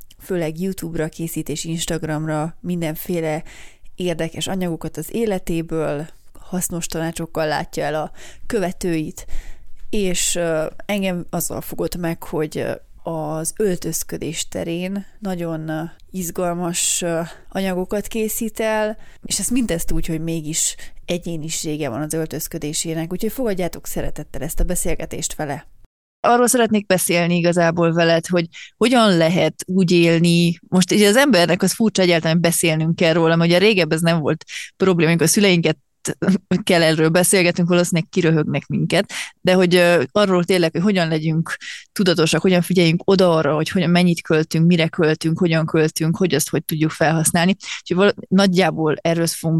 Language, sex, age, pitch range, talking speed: Hungarian, female, 30-49, 160-185 Hz, 130 wpm